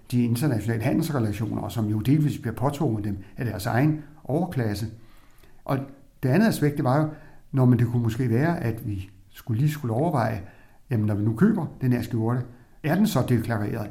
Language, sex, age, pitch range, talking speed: Danish, male, 60-79, 115-155 Hz, 195 wpm